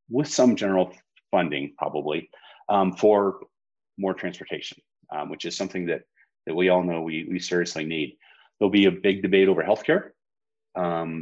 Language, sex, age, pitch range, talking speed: English, male, 30-49, 85-95 Hz, 160 wpm